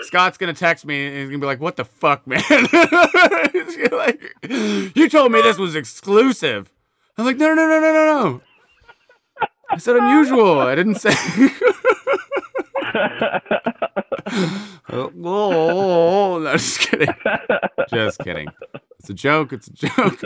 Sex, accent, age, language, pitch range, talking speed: male, American, 30-49, English, 120-190 Hz, 155 wpm